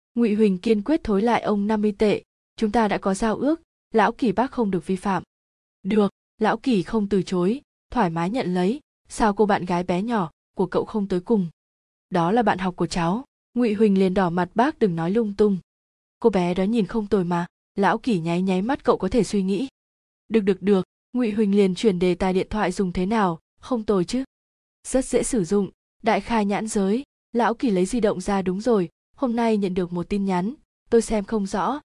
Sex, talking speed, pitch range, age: female, 225 wpm, 185-225 Hz, 20-39